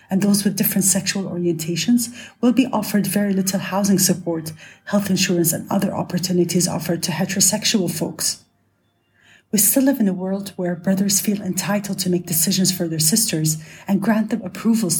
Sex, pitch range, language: female, 175-210 Hz, English